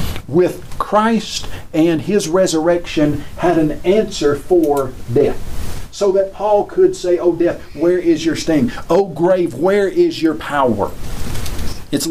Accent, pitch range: American, 155-205 Hz